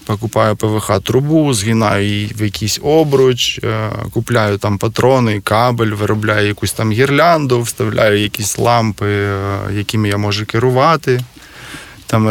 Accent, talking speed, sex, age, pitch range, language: native, 115 wpm, male, 20-39, 105-120 Hz, Ukrainian